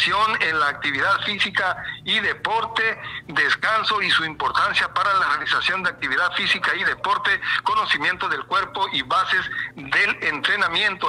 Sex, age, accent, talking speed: male, 60-79, Mexican, 135 wpm